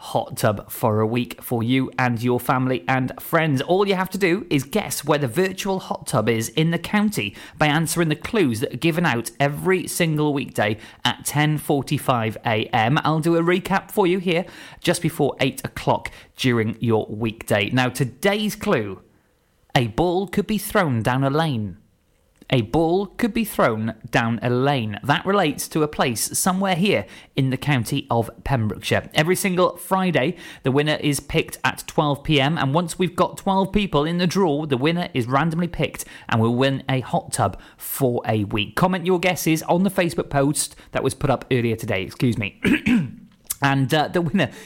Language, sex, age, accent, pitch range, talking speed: English, male, 20-39, British, 125-180 Hz, 185 wpm